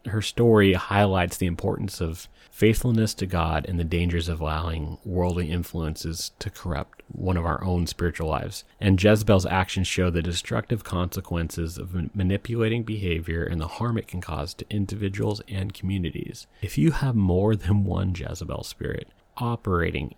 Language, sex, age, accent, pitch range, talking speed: English, male, 30-49, American, 90-110 Hz, 160 wpm